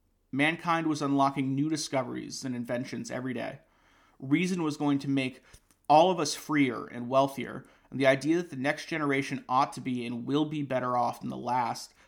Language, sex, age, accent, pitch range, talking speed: English, male, 30-49, American, 120-145 Hz, 190 wpm